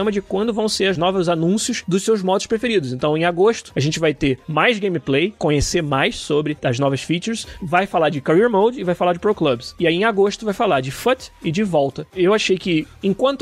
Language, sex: Portuguese, male